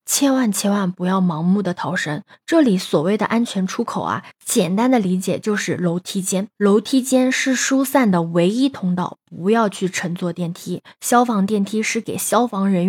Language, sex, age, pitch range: Chinese, female, 20-39, 180-235 Hz